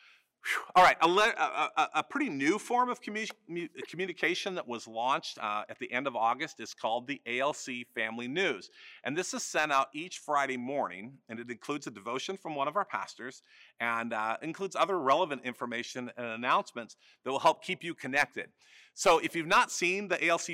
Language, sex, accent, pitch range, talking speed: English, male, American, 120-165 Hz, 185 wpm